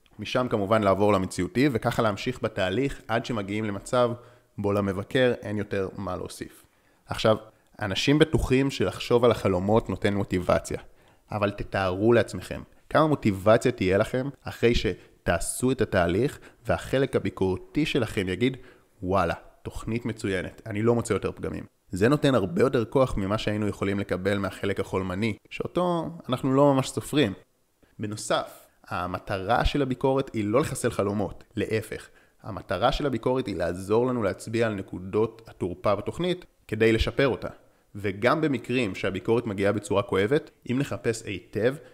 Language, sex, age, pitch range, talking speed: Hebrew, male, 30-49, 100-125 Hz, 135 wpm